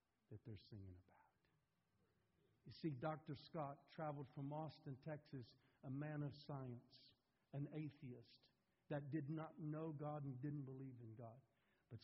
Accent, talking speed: American, 145 wpm